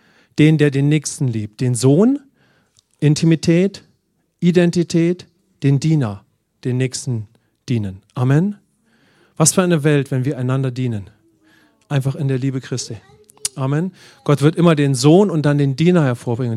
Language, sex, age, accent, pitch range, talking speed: English, male, 40-59, German, 125-160 Hz, 140 wpm